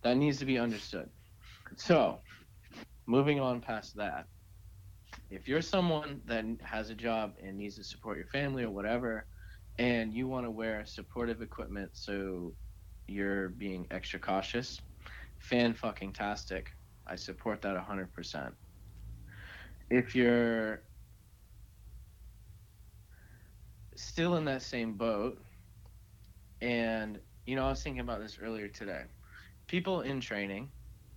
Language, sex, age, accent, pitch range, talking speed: English, male, 30-49, American, 95-115 Hz, 125 wpm